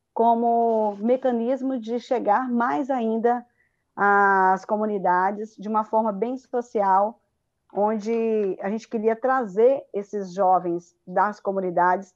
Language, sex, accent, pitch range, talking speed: Portuguese, female, Brazilian, 195-250 Hz, 110 wpm